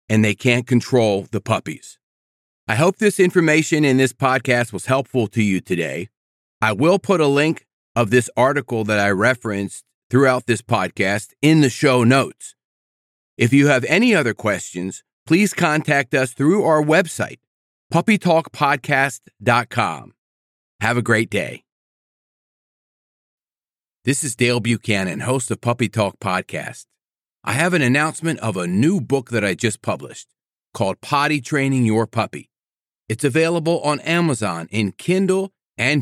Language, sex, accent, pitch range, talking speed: English, male, American, 115-160 Hz, 145 wpm